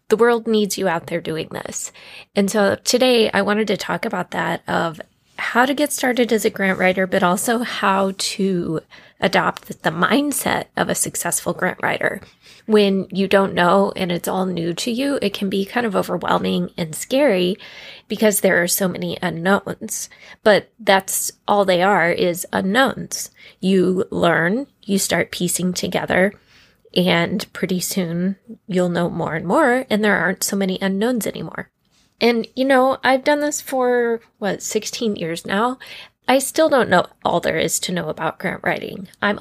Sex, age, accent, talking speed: female, 20-39, American, 175 wpm